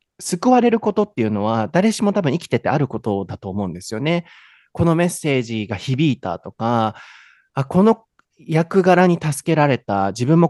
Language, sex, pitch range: Japanese, male, 110-185 Hz